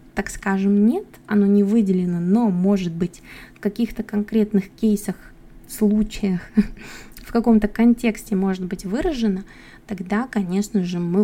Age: 20-39